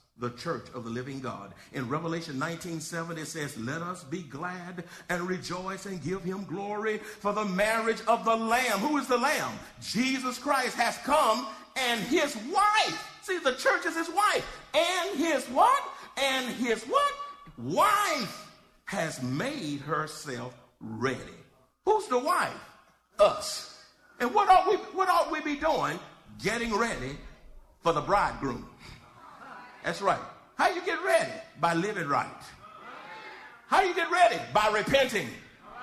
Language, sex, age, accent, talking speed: English, male, 50-69, American, 145 wpm